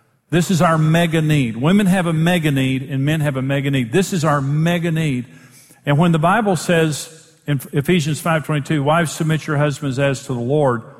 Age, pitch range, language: 50-69, 135-180 Hz, English